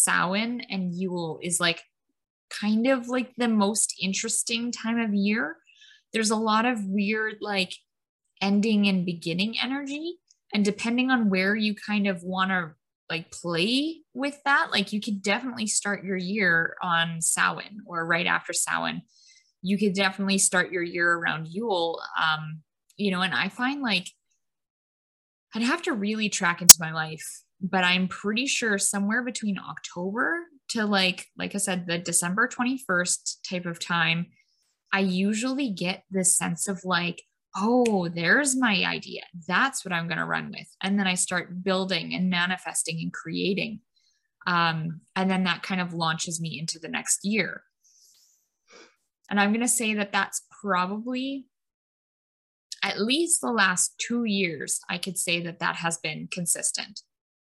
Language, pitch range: English, 175-225 Hz